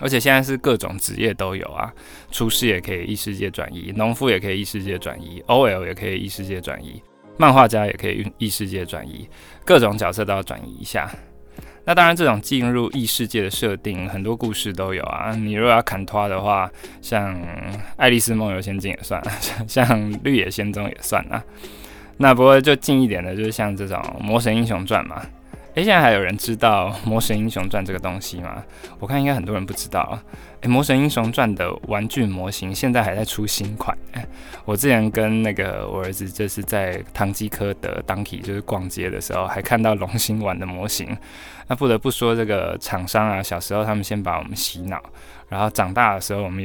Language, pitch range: Chinese, 95-115 Hz